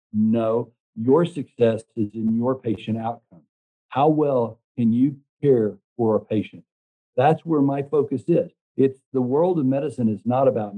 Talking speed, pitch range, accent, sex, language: 160 wpm, 110-130 Hz, American, male, English